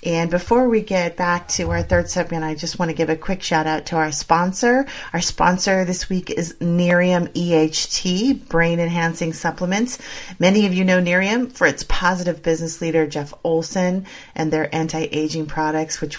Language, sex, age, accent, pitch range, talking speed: English, female, 40-59, American, 155-190 Hz, 180 wpm